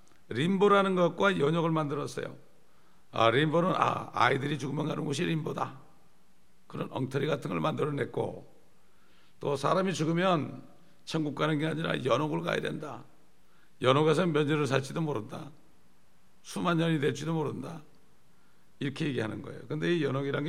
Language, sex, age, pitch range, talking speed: English, male, 60-79, 140-170 Hz, 125 wpm